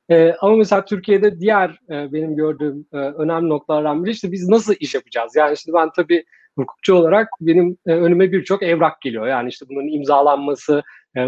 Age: 40-59